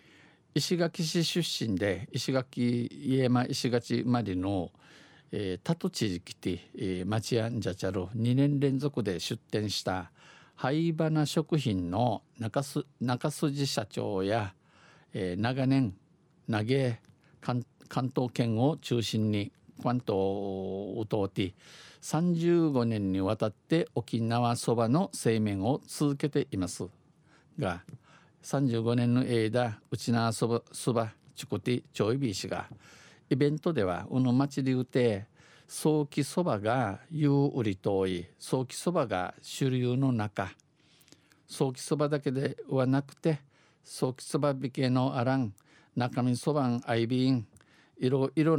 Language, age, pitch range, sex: Japanese, 50-69, 115-150 Hz, male